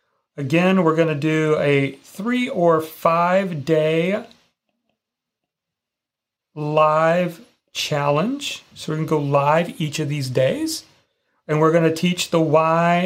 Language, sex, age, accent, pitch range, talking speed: English, male, 40-59, American, 145-180 Hz, 135 wpm